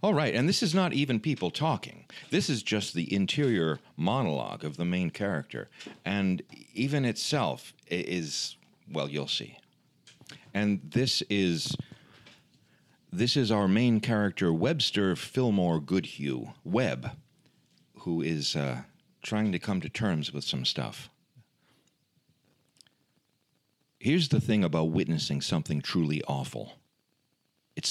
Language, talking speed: English, 125 wpm